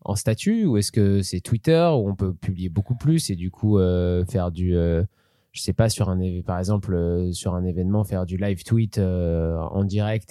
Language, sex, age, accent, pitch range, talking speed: French, male, 20-39, French, 95-120 Hz, 225 wpm